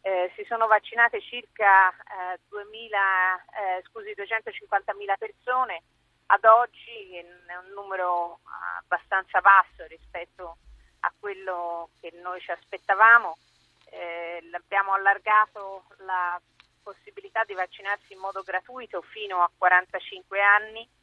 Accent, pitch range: native, 180-210 Hz